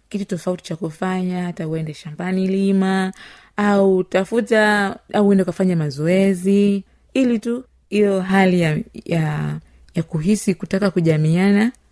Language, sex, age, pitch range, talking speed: Swahili, female, 30-49, 160-205 Hz, 105 wpm